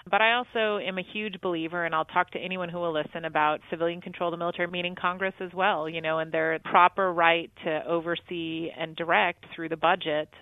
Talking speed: 215 wpm